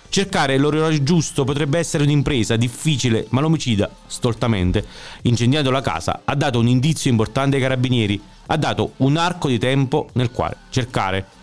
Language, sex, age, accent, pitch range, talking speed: Italian, male, 40-59, native, 115-160 Hz, 150 wpm